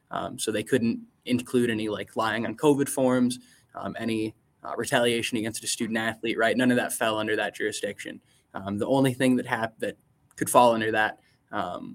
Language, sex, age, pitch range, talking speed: English, male, 20-39, 110-125 Hz, 195 wpm